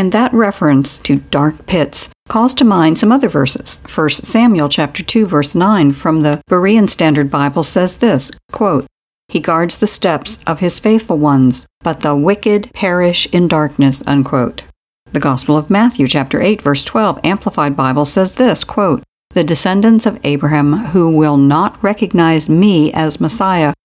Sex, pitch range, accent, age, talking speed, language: female, 145-195 Hz, American, 60-79, 165 wpm, English